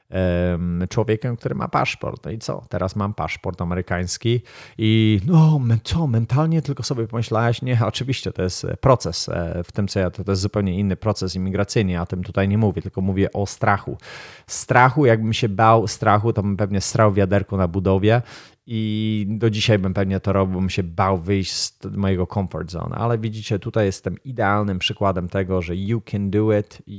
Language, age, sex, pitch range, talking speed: Polish, 30-49, male, 95-110 Hz, 180 wpm